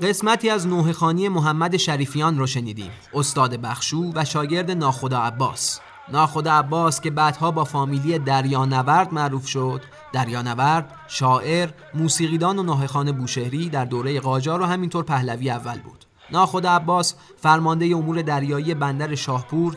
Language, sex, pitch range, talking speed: Persian, male, 130-160 Hz, 125 wpm